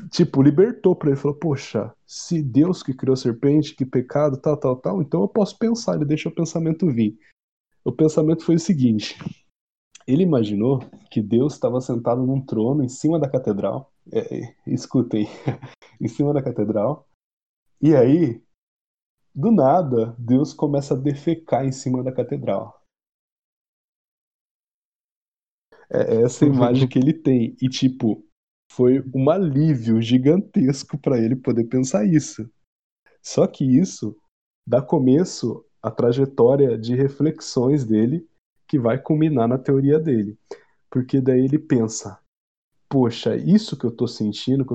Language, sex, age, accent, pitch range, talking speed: Portuguese, male, 20-39, Brazilian, 120-155 Hz, 140 wpm